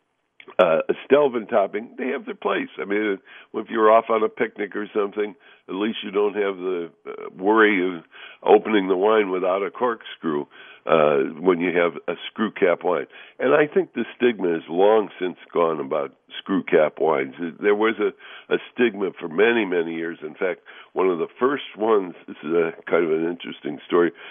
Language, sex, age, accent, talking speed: English, female, 60-79, American, 185 wpm